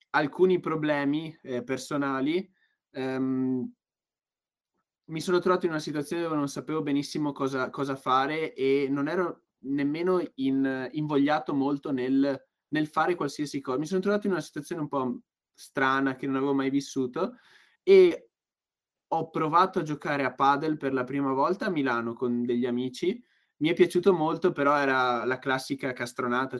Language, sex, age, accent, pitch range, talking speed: Italian, male, 20-39, native, 130-155 Hz, 150 wpm